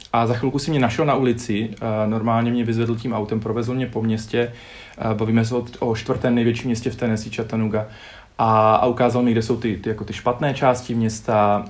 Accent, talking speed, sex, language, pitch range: native, 195 wpm, male, Czech, 115-135 Hz